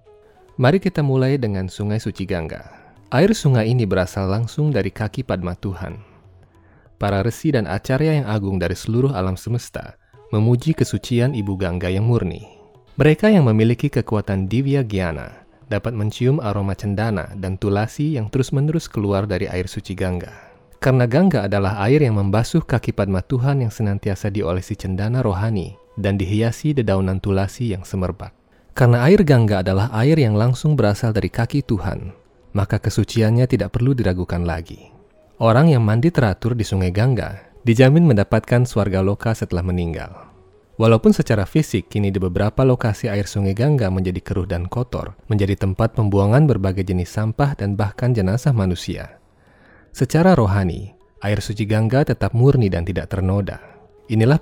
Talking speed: 150 wpm